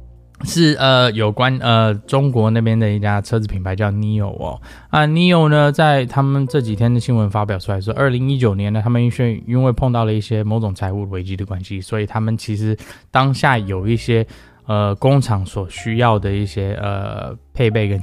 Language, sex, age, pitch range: Chinese, male, 20-39, 100-120 Hz